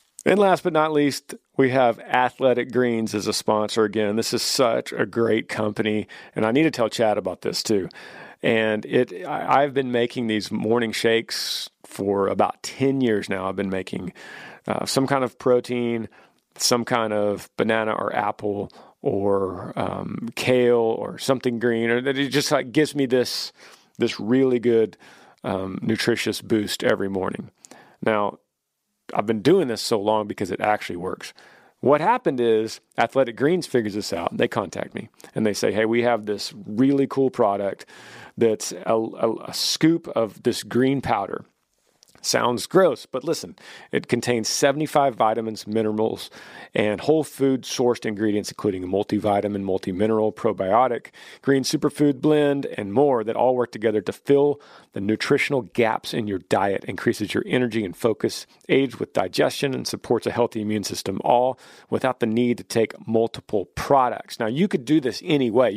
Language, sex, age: English, male, 40-59